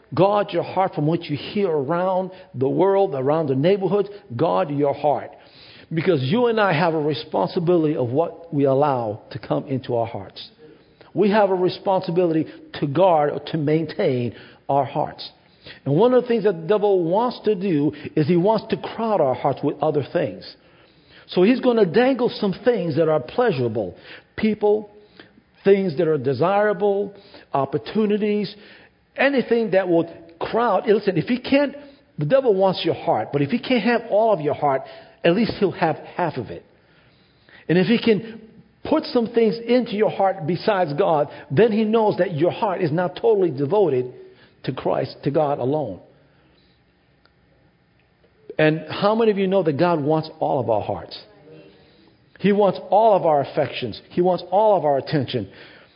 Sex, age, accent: male, 50-69, American